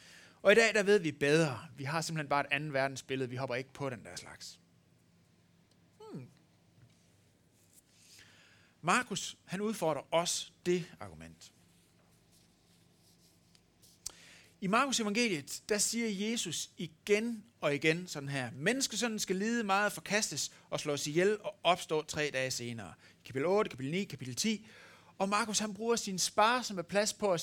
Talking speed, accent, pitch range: 150 wpm, native, 135-205 Hz